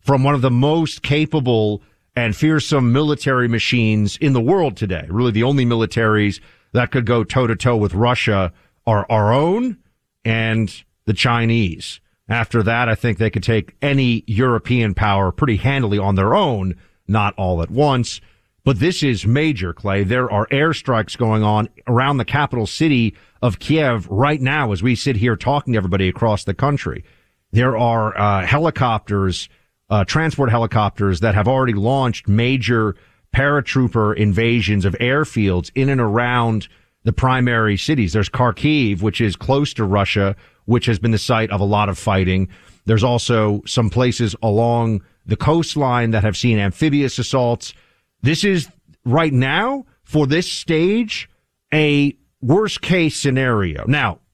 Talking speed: 155 wpm